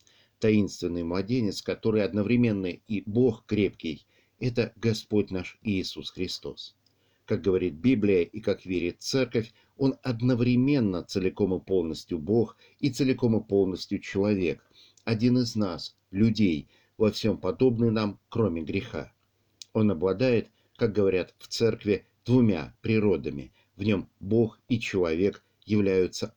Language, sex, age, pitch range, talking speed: Russian, male, 50-69, 95-115 Hz, 125 wpm